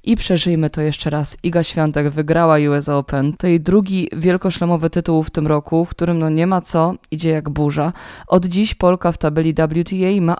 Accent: native